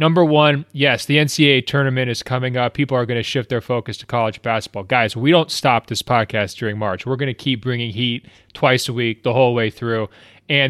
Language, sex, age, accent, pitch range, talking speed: English, male, 30-49, American, 120-145 Hz, 230 wpm